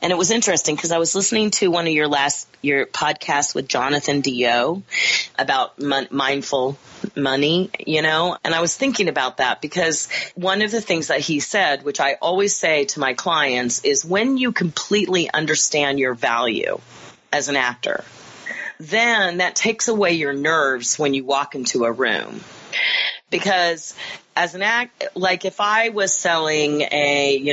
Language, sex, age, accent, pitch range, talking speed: English, female, 40-59, American, 145-190 Hz, 170 wpm